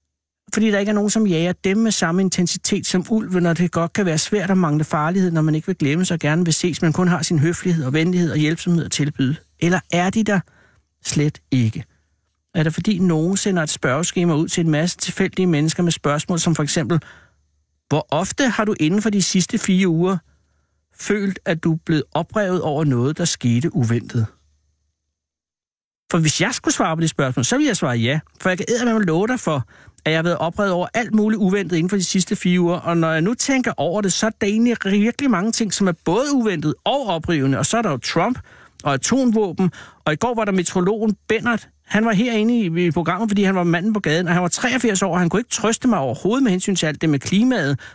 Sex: male